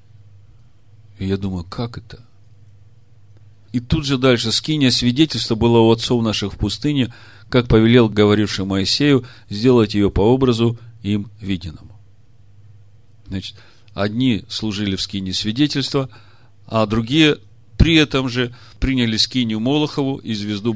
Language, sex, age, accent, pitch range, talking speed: Russian, male, 40-59, native, 105-120 Hz, 125 wpm